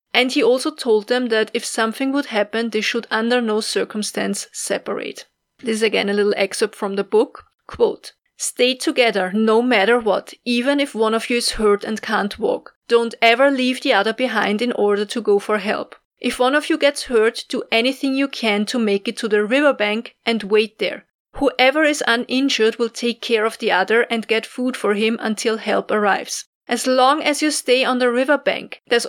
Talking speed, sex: 205 wpm, female